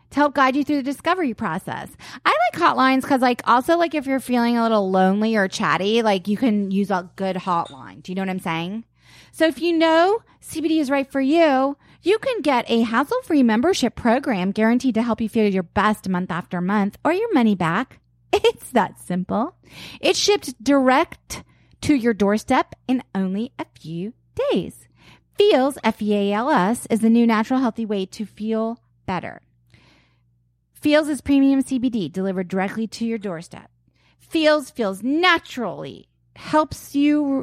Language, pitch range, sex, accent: English, 190-275 Hz, female, American